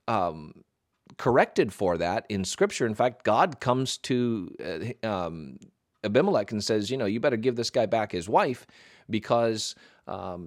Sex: male